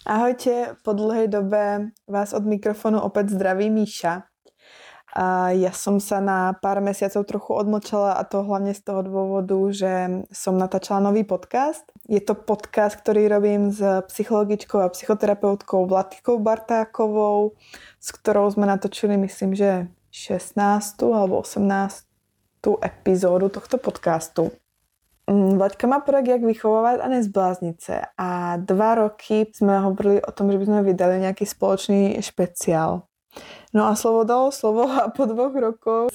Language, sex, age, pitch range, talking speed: Czech, female, 20-39, 190-215 Hz, 135 wpm